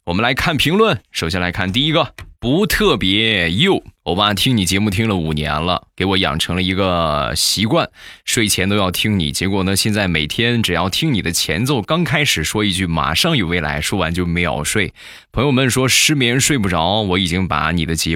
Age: 20-39